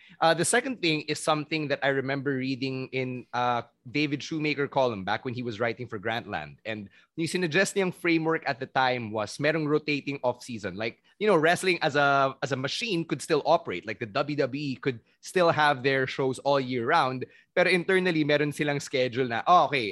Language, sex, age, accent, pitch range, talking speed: English, male, 20-39, Filipino, 125-160 Hz, 200 wpm